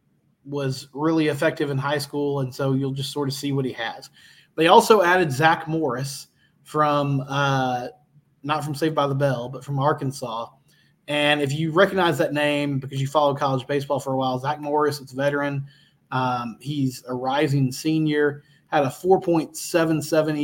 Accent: American